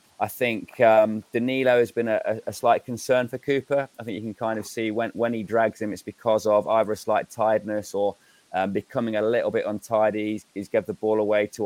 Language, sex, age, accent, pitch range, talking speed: English, male, 20-39, British, 100-115 Hz, 230 wpm